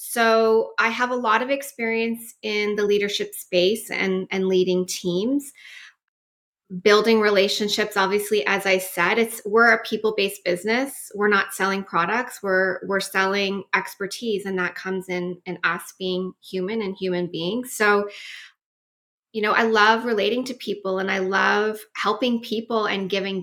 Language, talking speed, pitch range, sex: English, 155 wpm, 195-250 Hz, female